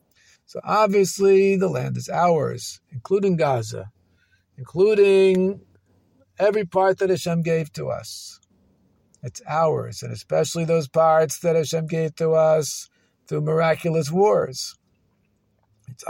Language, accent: English, American